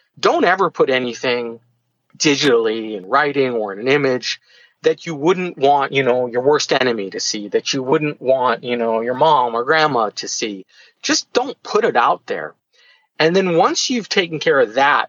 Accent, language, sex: American, English, male